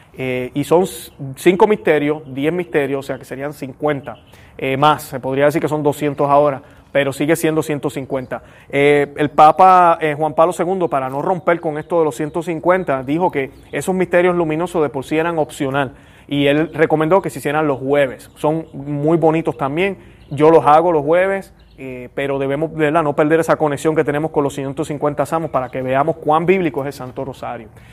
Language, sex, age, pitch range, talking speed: Spanish, male, 30-49, 140-175 Hz, 195 wpm